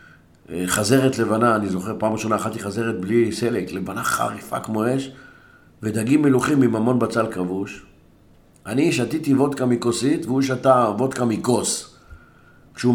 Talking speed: 135 wpm